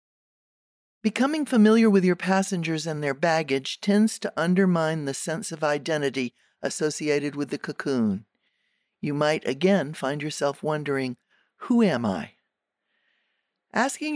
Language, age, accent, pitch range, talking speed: English, 50-69, American, 145-195 Hz, 125 wpm